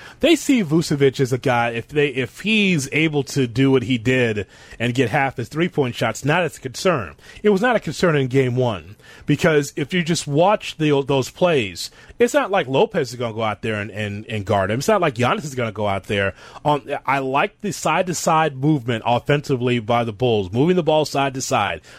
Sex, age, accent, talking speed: male, 30-49, American, 230 wpm